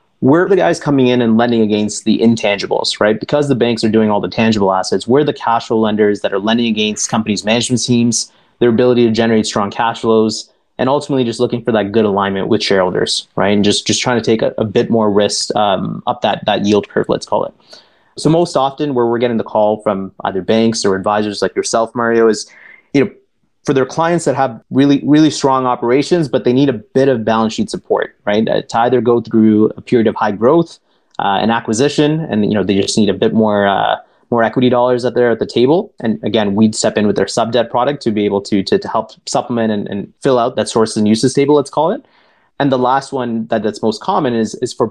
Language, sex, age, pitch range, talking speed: English, male, 30-49, 110-125 Hz, 240 wpm